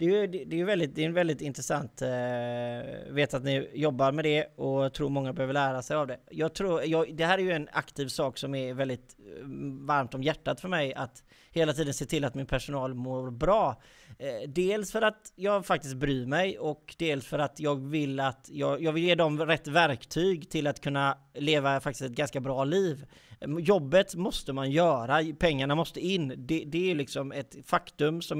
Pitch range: 140-175 Hz